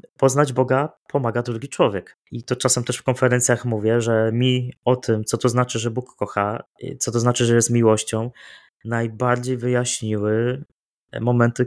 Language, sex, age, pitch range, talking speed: Polish, male, 20-39, 110-130 Hz, 160 wpm